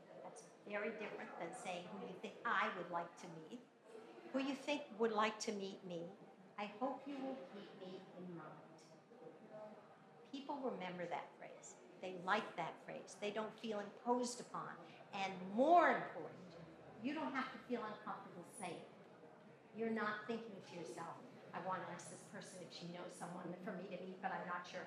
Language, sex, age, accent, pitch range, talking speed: English, female, 50-69, American, 180-230 Hz, 180 wpm